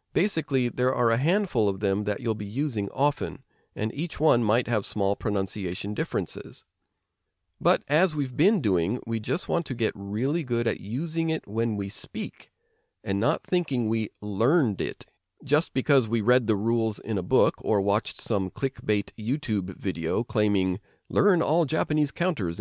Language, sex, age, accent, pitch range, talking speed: English, male, 40-59, American, 105-145 Hz, 170 wpm